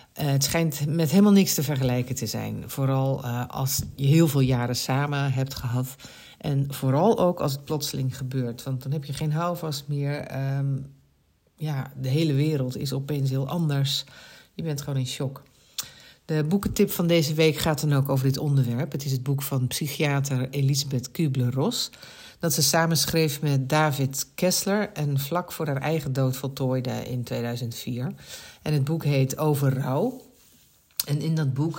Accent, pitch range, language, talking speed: Dutch, 135-155 Hz, Dutch, 170 wpm